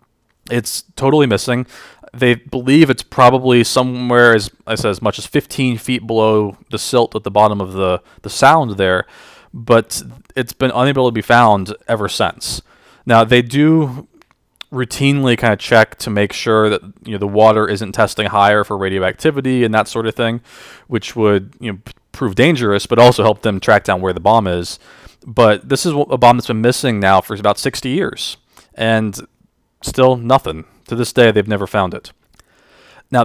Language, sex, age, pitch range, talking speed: English, male, 20-39, 105-125 Hz, 185 wpm